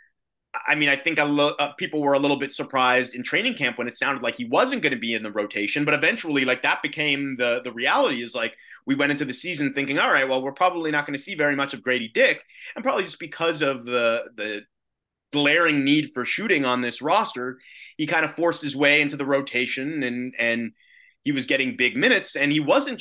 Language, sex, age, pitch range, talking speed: English, male, 30-49, 130-165 Hz, 235 wpm